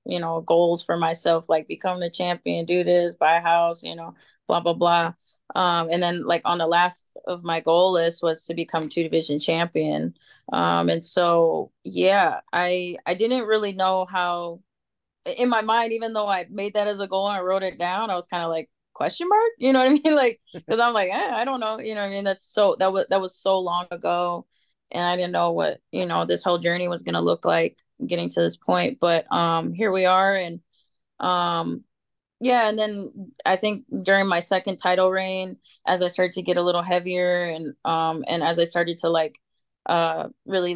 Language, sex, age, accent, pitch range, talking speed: English, female, 20-39, American, 170-190 Hz, 220 wpm